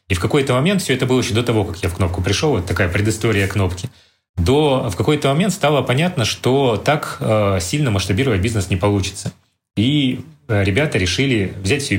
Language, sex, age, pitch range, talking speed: Russian, male, 30-49, 95-120 Hz, 200 wpm